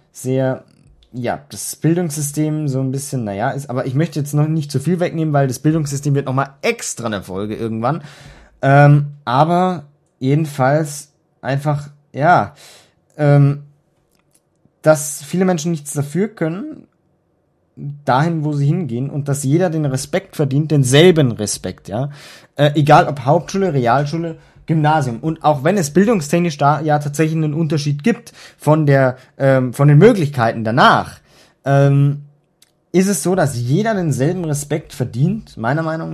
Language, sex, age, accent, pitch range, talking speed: German, male, 20-39, German, 135-160 Hz, 145 wpm